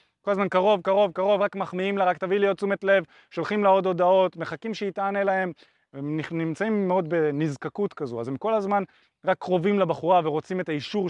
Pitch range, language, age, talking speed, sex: 155-210 Hz, Hebrew, 20-39, 200 wpm, male